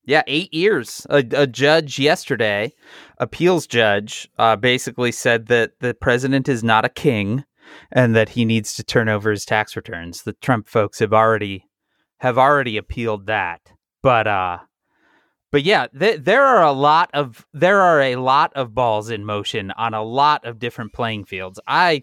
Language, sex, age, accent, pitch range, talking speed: English, male, 30-49, American, 110-140 Hz, 175 wpm